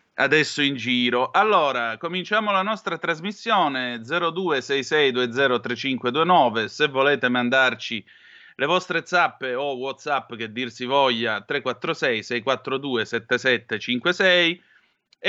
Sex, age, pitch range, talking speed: male, 30-49, 120-155 Hz, 85 wpm